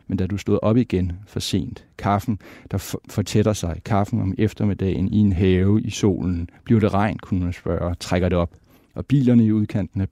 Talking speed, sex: 215 wpm, male